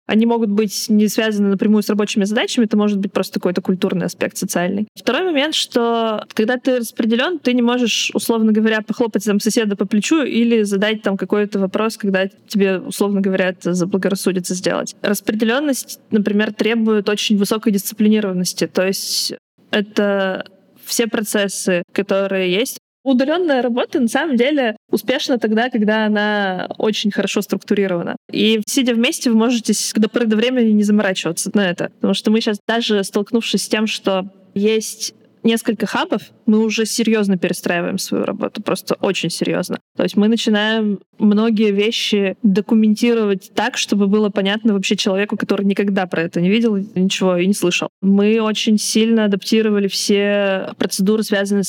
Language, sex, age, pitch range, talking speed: Russian, female, 20-39, 195-230 Hz, 155 wpm